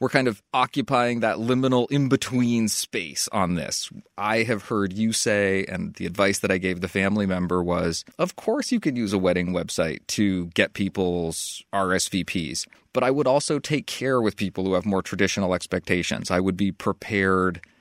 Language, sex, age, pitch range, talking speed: English, male, 30-49, 90-110 Hz, 180 wpm